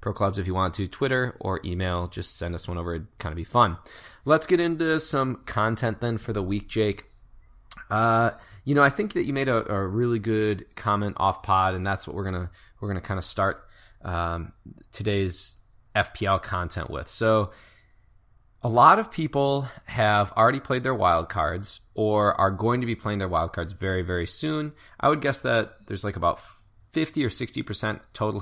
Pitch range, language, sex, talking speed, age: 95-120 Hz, English, male, 200 wpm, 20-39